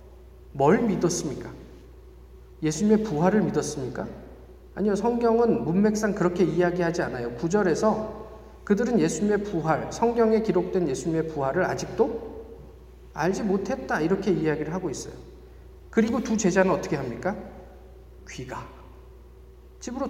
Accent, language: native, Korean